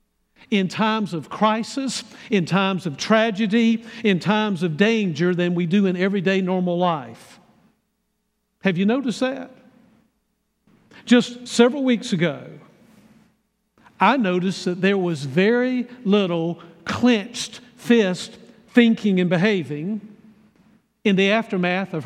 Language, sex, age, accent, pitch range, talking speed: English, male, 50-69, American, 180-220 Hz, 115 wpm